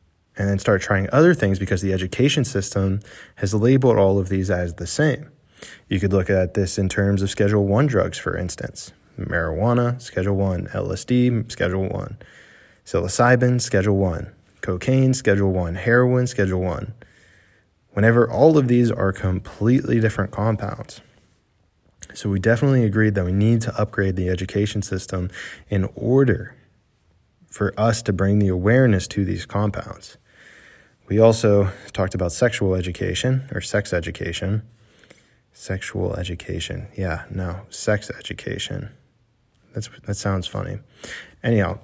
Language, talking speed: English, 140 wpm